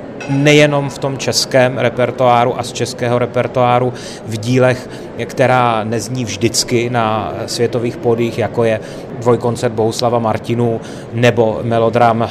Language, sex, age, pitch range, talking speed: Czech, male, 30-49, 115-125 Hz, 115 wpm